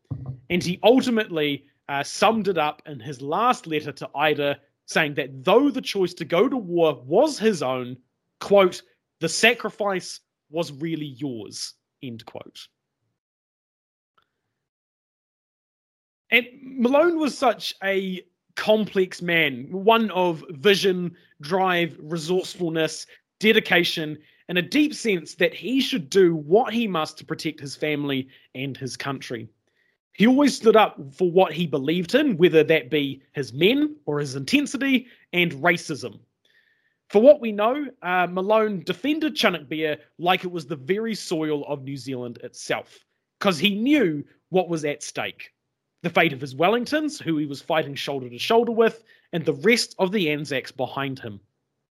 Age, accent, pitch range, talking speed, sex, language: 30-49, Australian, 150-215 Hz, 150 wpm, male, English